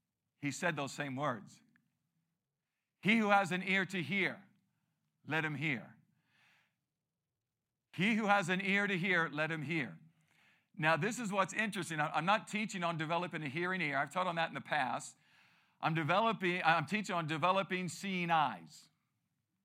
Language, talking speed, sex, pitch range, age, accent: English, 160 wpm, male, 145-180 Hz, 50-69, American